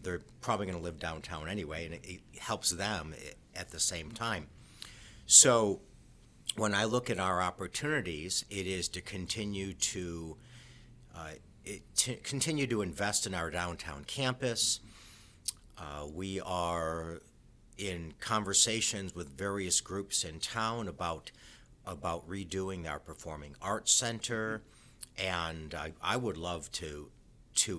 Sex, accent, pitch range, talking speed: male, American, 85-110 Hz, 130 wpm